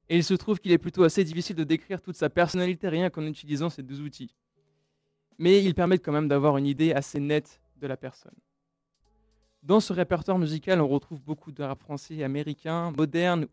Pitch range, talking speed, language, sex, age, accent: 140-175 Hz, 200 wpm, French, male, 20-39, French